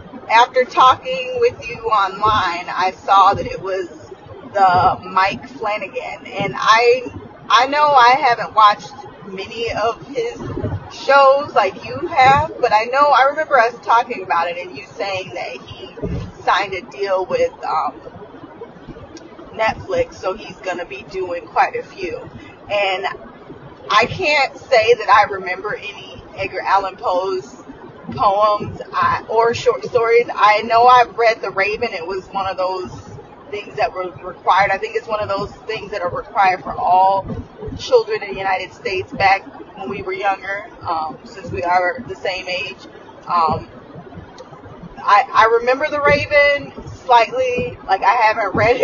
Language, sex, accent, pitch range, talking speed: English, female, American, 195-315 Hz, 155 wpm